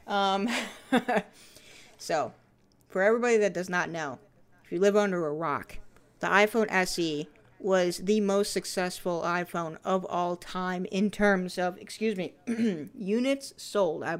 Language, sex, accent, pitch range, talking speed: English, female, American, 175-210 Hz, 140 wpm